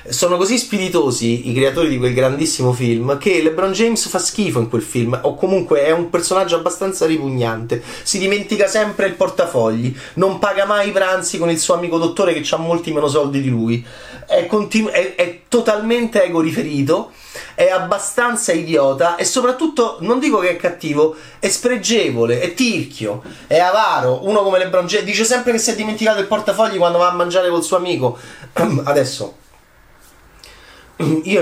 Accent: native